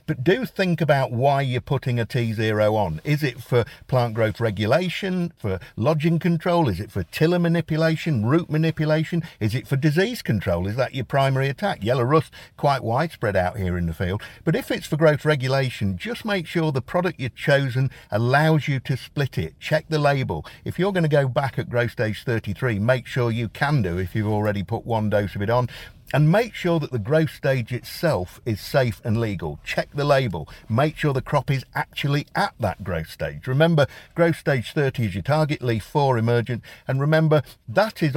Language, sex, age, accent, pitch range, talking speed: English, male, 50-69, British, 105-150 Hz, 205 wpm